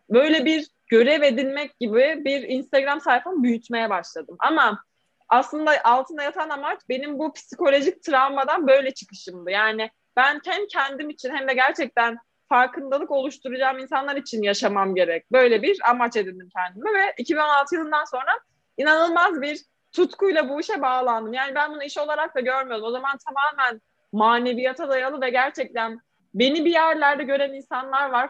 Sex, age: female, 20-39